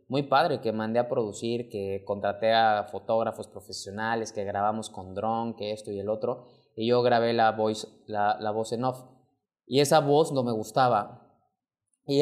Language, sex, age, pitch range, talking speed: Spanish, male, 20-39, 105-125 Hz, 170 wpm